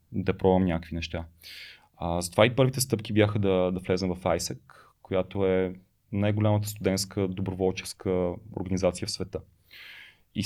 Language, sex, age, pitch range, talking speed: Bulgarian, male, 30-49, 90-105 Hz, 140 wpm